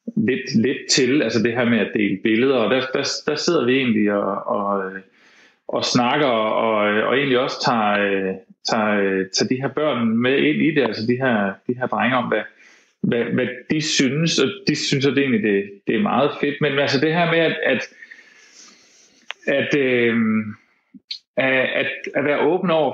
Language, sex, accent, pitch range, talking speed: Danish, male, native, 110-150 Hz, 190 wpm